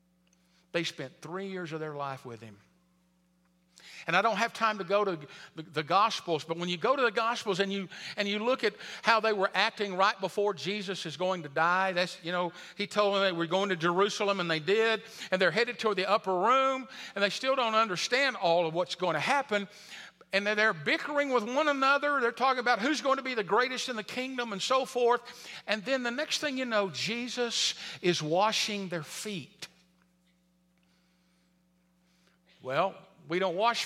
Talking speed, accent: 200 wpm, American